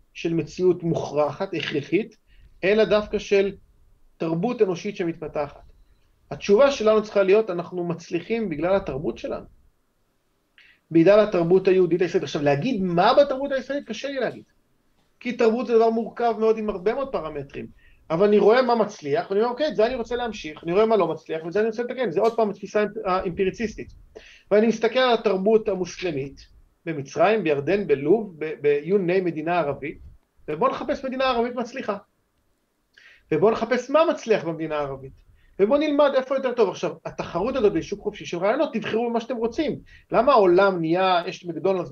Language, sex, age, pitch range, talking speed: Hebrew, male, 40-59, 170-225 Hz, 135 wpm